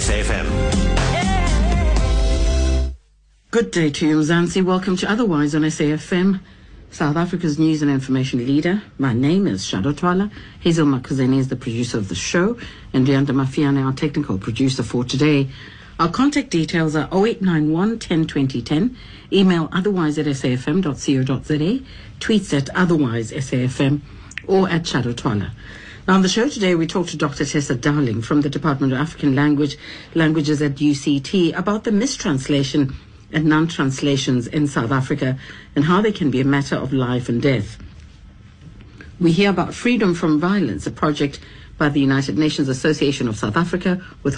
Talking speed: 150 wpm